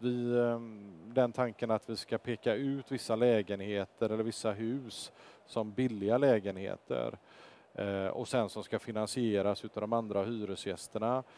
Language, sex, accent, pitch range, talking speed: Swedish, male, Norwegian, 110-130 Hz, 130 wpm